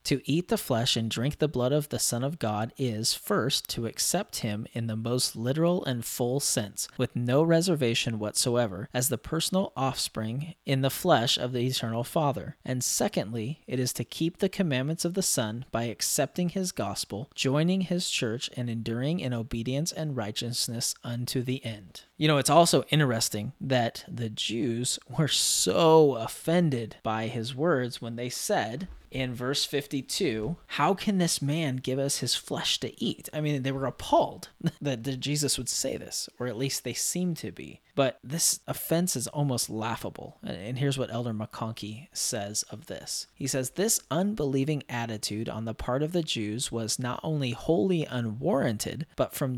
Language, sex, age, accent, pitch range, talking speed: English, male, 20-39, American, 115-155 Hz, 175 wpm